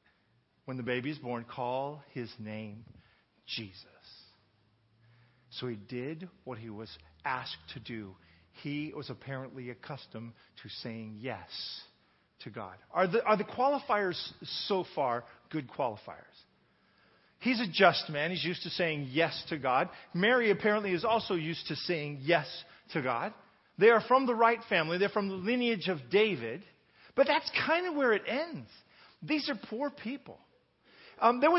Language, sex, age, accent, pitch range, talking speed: English, male, 40-59, American, 135-210 Hz, 155 wpm